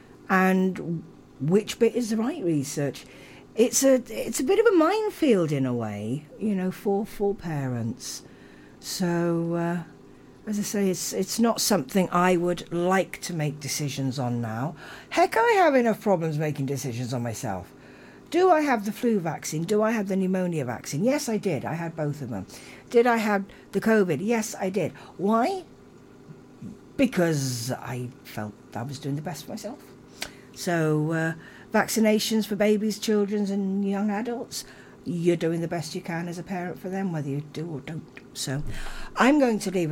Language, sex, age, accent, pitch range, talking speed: English, female, 60-79, British, 145-210 Hz, 175 wpm